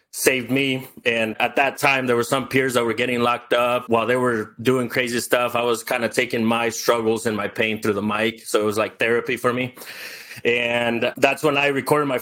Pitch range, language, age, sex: 115-130 Hz, English, 30-49, male